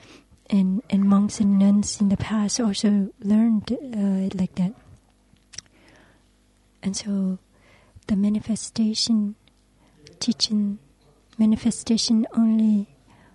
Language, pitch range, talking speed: English, 195-220 Hz, 95 wpm